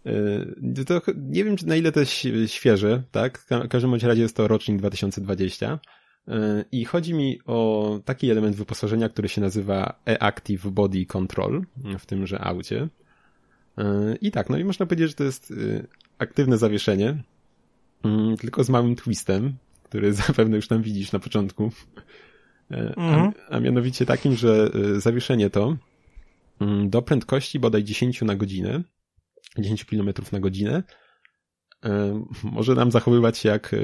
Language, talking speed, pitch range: Polish, 135 wpm, 100-125 Hz